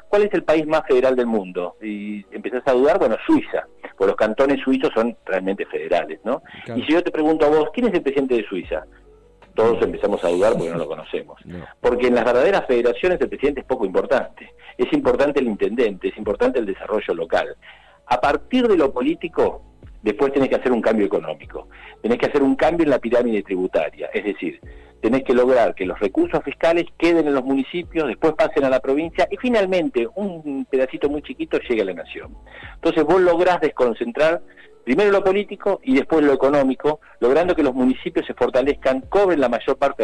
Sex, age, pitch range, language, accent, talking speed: male, 50-69, 125-200 Hz, Spanish, Argentinian, 200 wpm